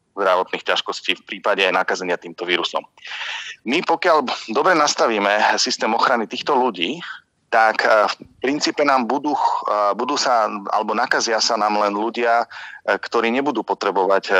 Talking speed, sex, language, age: 130 wpm, male, Slovak, 30-49